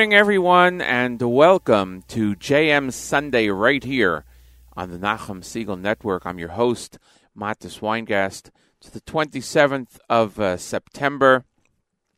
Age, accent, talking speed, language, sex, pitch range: 40-59, American, 130 wpm, English, male, 90-115 Hz